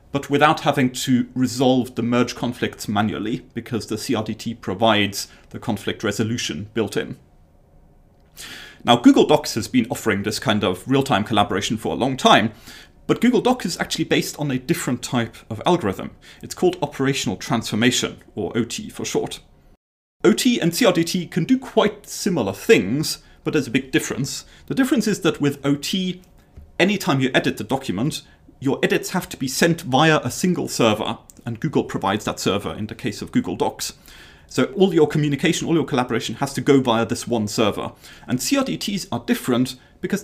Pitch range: 110-170 Hz